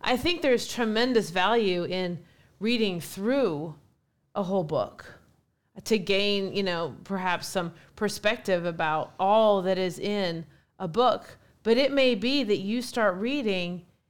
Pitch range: 185-240 Hz